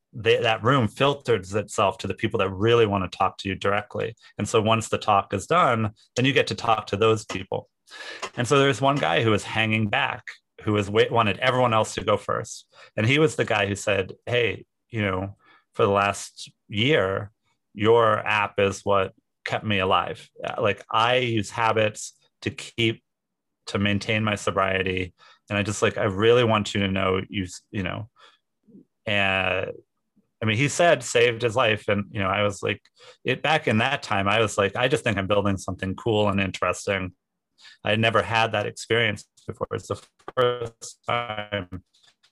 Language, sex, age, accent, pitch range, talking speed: English, male, 30-49, American, 100-115 Hz, 190 wpm